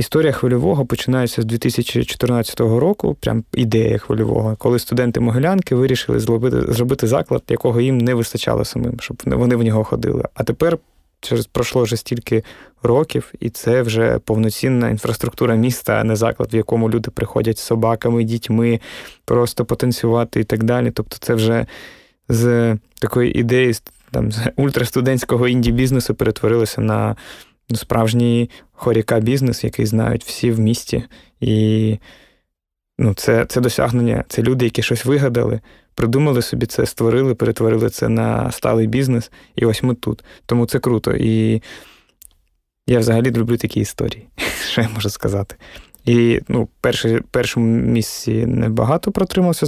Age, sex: 20-39, male